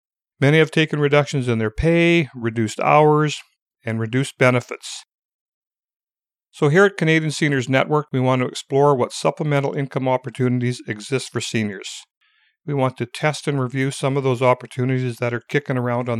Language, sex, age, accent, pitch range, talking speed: English, male, 50-69, American, 130-160 Hz, 165 wpm